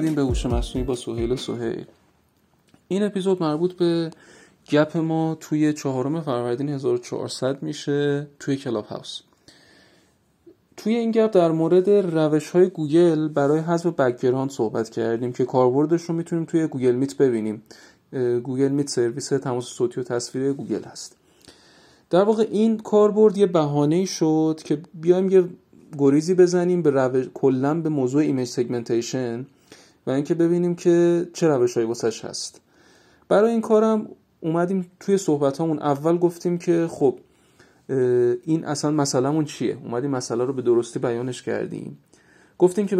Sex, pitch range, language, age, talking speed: male, 130-175 Hz, Persian, 40-59, 140 wpm